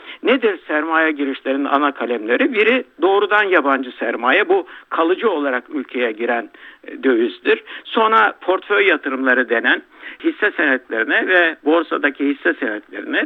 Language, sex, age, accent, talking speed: Turkish, male, 60-79, native, 115 wpm